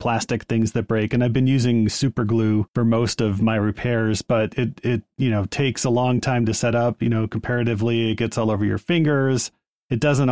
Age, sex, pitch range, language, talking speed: 30-49, male, 105-120 Hz, English, 220 wpm